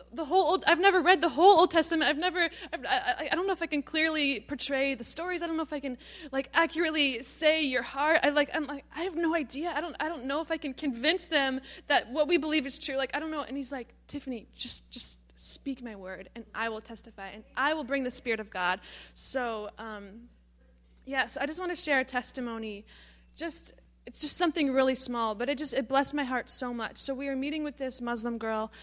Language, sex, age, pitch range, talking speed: English, female, 20-39, 245-315 Hz, 245 wpm